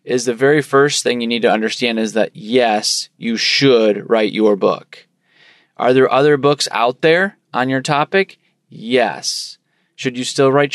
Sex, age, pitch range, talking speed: male, 20-39, 125-155 Hz, 175 wpm